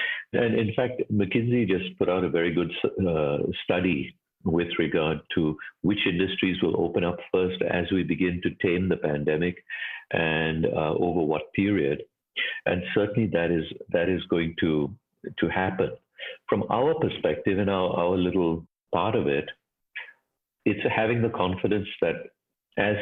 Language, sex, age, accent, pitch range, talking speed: English, male, 50-69, Indian, 85-110 Hz, 155 wpm